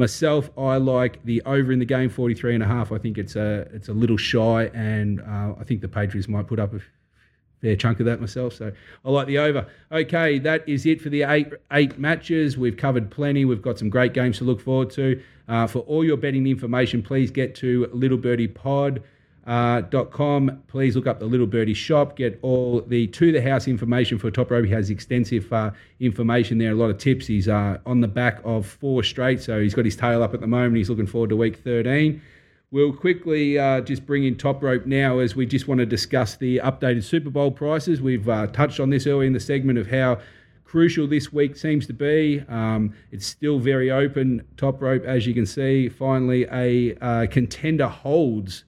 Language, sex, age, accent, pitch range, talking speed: English, male, 30-49, Australian, 115-140 Hz, 220 wpm